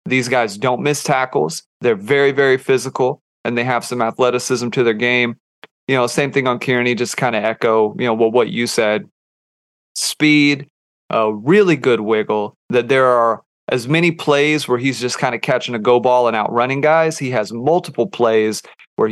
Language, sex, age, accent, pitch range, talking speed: English, male, 30-49, American, 115-135 Hz, 190 wpm